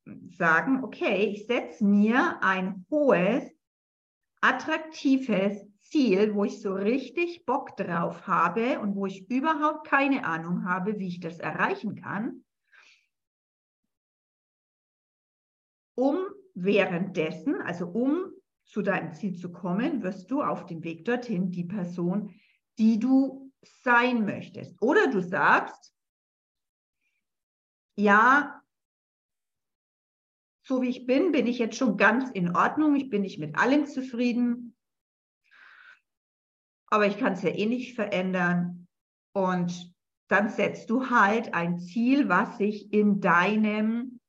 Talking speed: 120 wpm